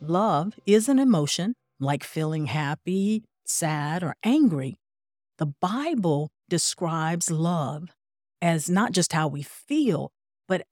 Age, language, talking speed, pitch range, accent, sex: 50-69, English, 120 wpm, 150-205 Hz, American, female